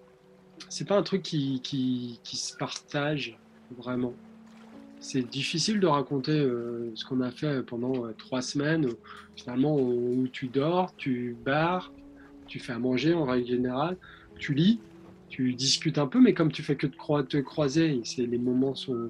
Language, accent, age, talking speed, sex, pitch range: French, French, 20-39, 165 wpm, male, 120-150 Hz